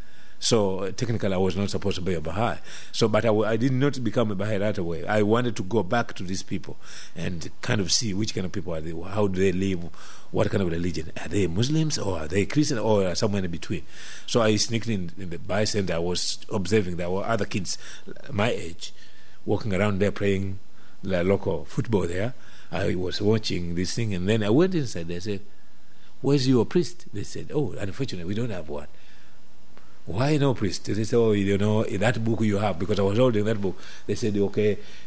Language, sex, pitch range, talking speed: English, male, 95-120 Hz, 220 wpm